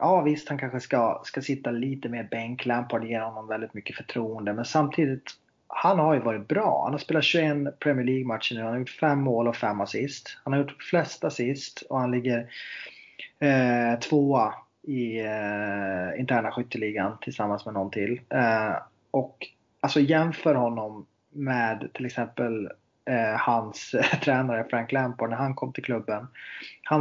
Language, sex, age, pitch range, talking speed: Swedish, male, 30-49, 115-135 Hz, 170 wpm